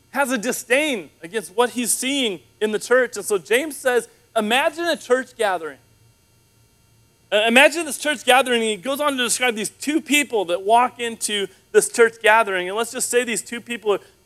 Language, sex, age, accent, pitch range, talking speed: English, male, 30-49, American, 185-245 Hz, 190 wpm